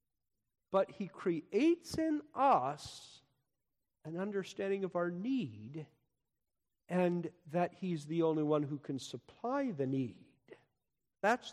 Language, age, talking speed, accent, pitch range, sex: English, 50-69, 115 wpm, American, 125-170 Hz, male